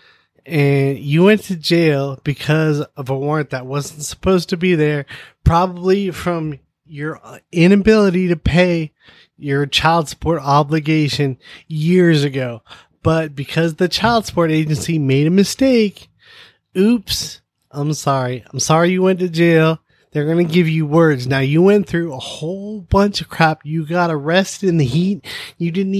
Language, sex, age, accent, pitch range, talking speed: English, male, 20-39, American, 135-175 Hz, 155 wpm